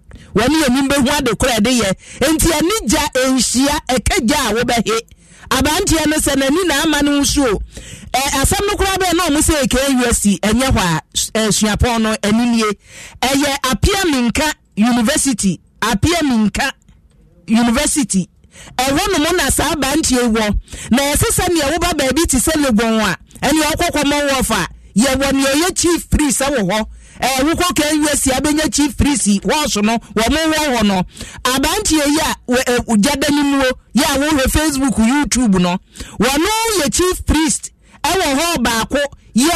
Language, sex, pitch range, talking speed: English, male, 220-300 Hz, 140 wpm